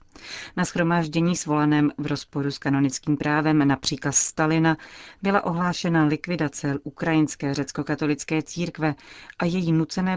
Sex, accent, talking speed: female, native, 120 wpm